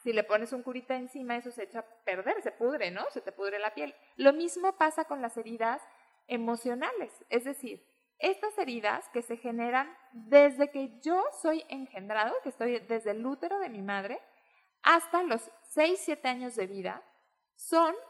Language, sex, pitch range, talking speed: Spanish, female, 230-305 Hz, 180 wpm